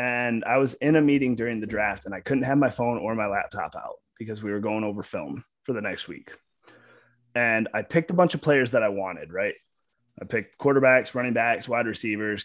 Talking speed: 225 wpm